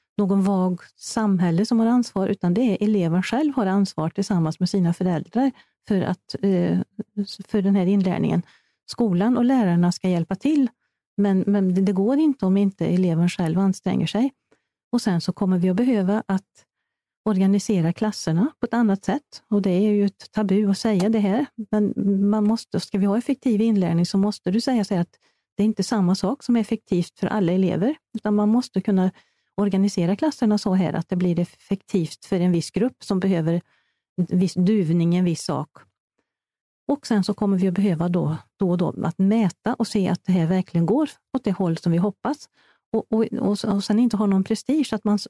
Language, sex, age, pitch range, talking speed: Swedish, female, 40-59, 185-225 Hz, 195 wpm